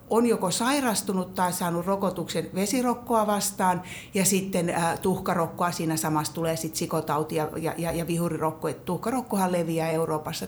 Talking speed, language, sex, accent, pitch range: 145 wpm, Finnish, female, native, 160-200 Hz